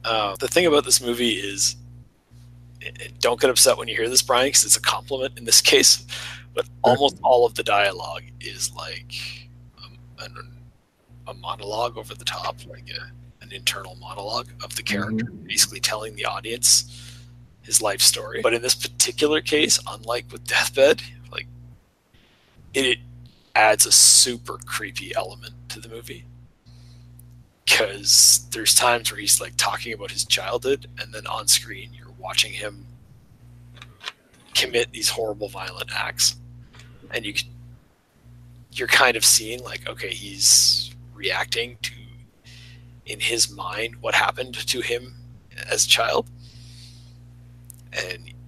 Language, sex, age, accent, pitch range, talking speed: English, male, 30-49, American, 110-120 Hz, 145 wpm